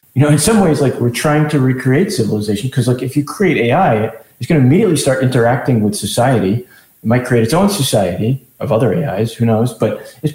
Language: English